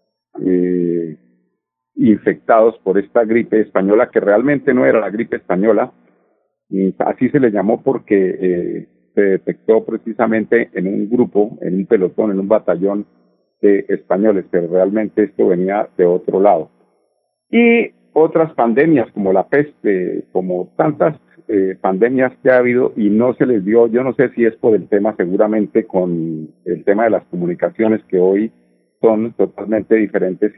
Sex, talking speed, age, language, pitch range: male, 155 wpm, 50-69, Spanish, 90-130 Hz